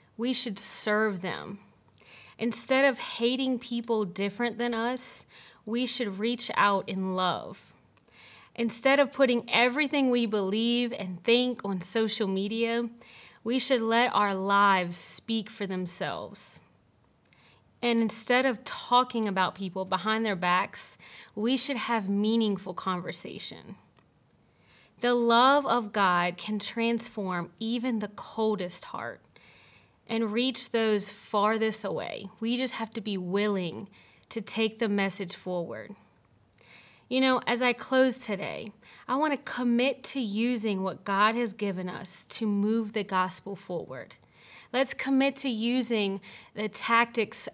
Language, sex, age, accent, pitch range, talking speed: English, female, 30-49, American, 200-240 Hz, 130 wpm